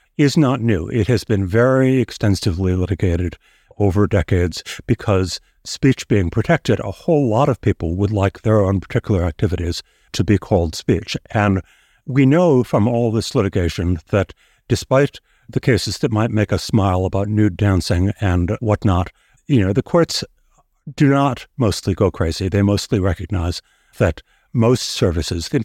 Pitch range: 95-125 Hz